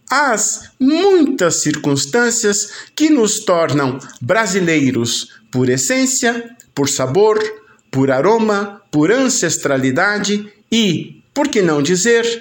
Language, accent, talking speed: Portuguese, Brazilian, 95 wpm